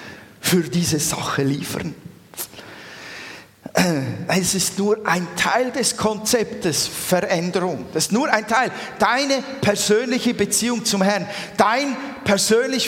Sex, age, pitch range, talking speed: male, 40-59, 195-255 Hz, 110 wpm